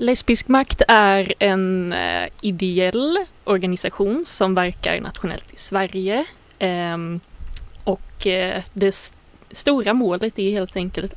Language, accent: Swedish, native